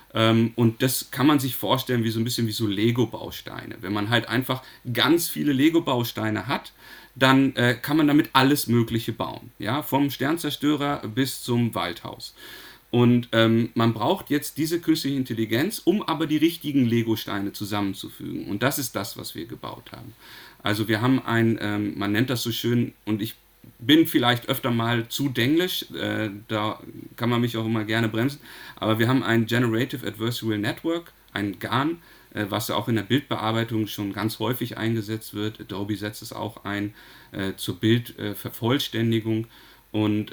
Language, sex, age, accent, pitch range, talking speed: German, male, 40-59, German, 110-135 Hz, 170 wpm